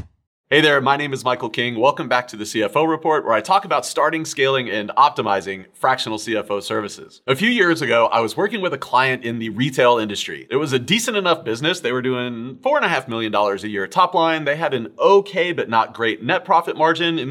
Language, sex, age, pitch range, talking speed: English, male, 30-49, 115-165 Hz, 220 wpm